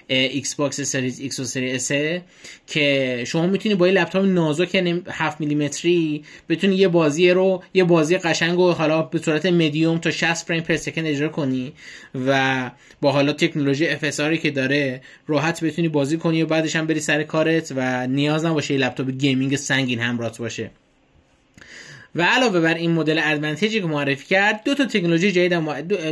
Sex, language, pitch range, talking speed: male, Persian, 140-170 Hz, 165 wpm